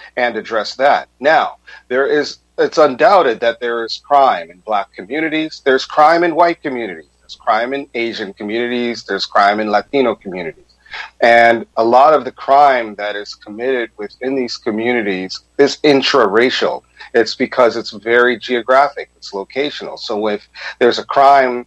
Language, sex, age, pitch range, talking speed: Arabic, male, 40-59, 110-135 Hz, 155 wpm